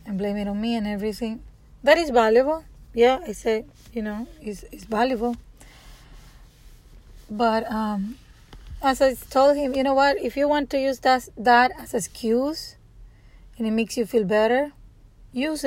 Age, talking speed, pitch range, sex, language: 30-49, 165 wpm, 215-265 Hz, female, English